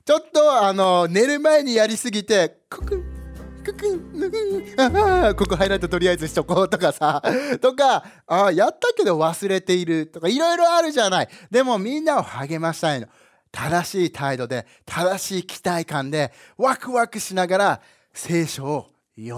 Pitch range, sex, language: 145-240 Hz, male, English